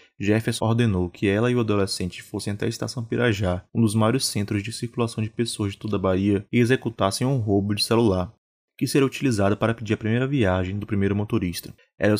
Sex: male